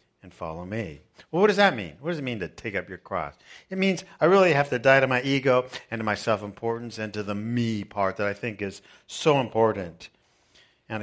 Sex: male